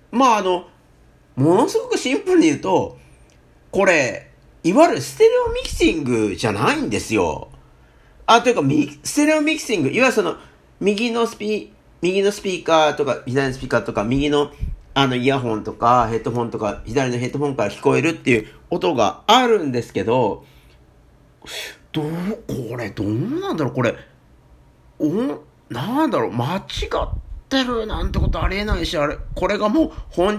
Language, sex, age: Japanese, male, 50-69